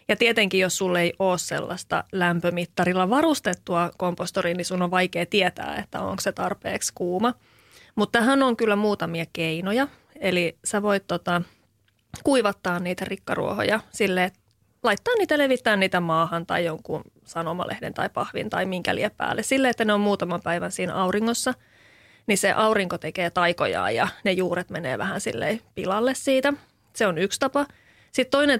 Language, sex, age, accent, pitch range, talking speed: Finnish, female, 30-49, native, 180-235 Hz, 155 wpm